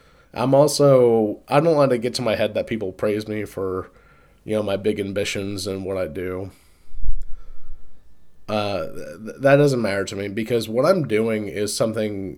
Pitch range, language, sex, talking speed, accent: 85-110 Hz, English, male, 175 wpm, American